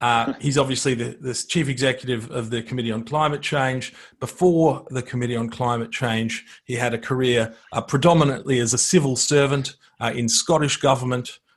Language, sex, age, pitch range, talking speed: English, male, 40-59, 115-150 Hz, 170 wpm